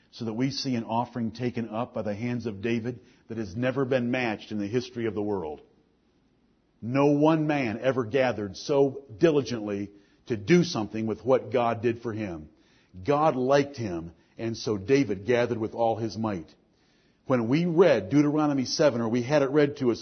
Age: 50-69